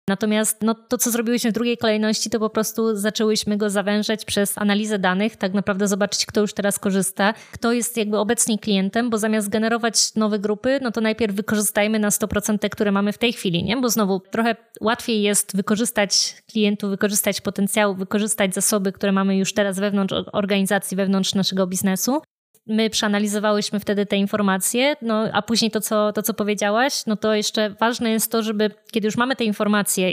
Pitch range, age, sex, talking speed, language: 200-220 Hz, 20-39, female, 185 wpm, Polish